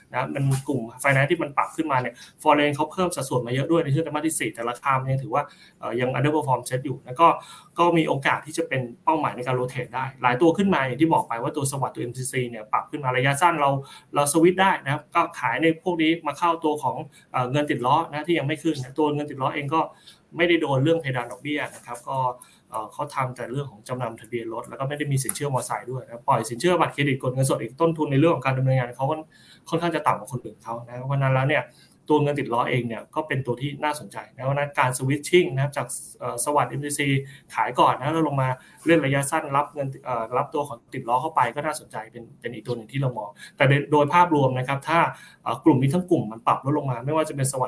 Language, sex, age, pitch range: Thai, male, 20-39, 125-155 Hz